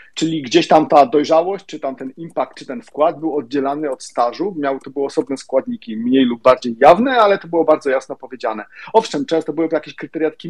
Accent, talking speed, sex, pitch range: native, 205 wpm, male, 130-165 Hz